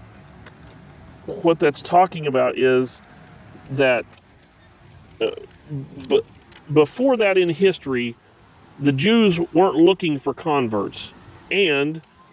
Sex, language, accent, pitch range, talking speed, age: male, English, American, 135-190 Hz, 90 wpm, 40-59